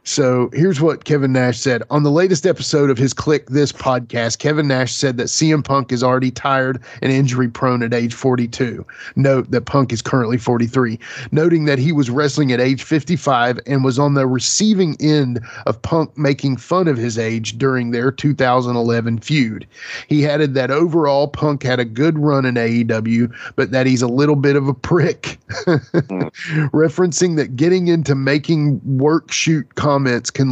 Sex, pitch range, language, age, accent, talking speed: male, 125-150 Hz, English, 30-49, American, 175 wpm